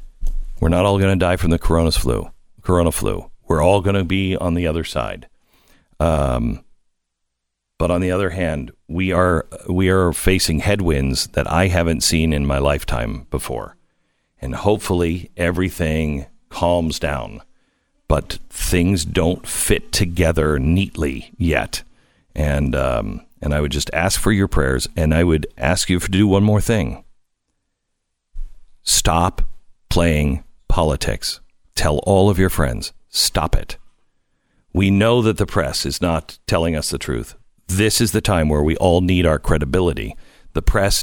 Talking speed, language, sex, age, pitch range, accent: 155 wpm, English, male, 50-69, 75-100 Hz, American